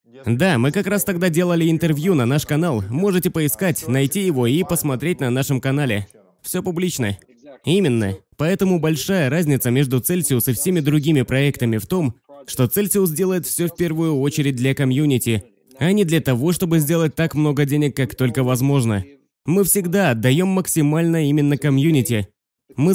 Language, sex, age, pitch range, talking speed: Russian, male, 20-39, 130-180 Hz, 160 wpm